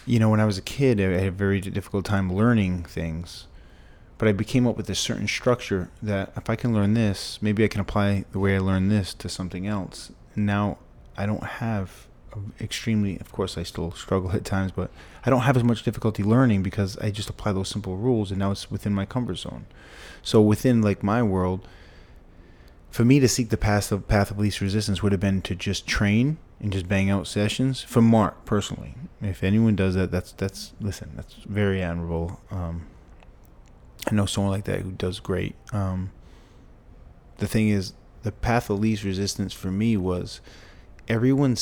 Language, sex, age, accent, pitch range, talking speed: English, male, 20-39, American, 95-110 Hz, 195 wpm